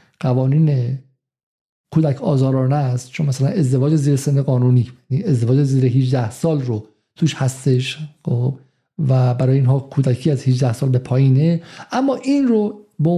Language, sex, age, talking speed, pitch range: Persian, male, 50-69, 145 wpm, 130-170 Hz